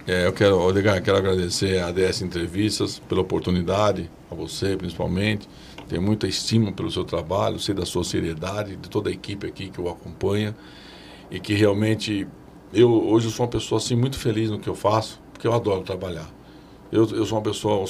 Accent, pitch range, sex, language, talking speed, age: Brazilian, 100-125 Hz, male, Portuguese, 195 wpm, 60-79